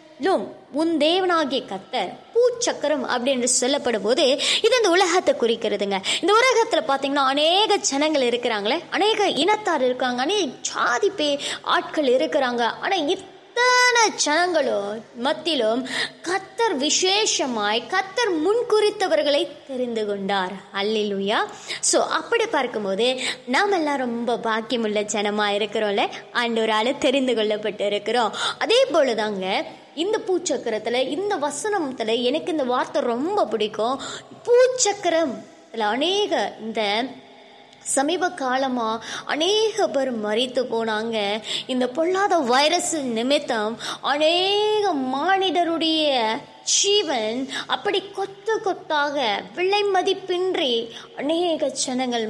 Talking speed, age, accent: 90 wpm, 20-39, native